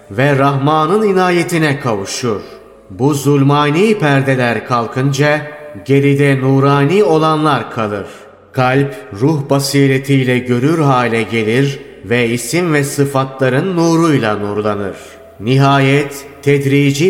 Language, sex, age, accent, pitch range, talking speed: Turkish, male, 30-49, native, 130-145 Hz, 90 wpm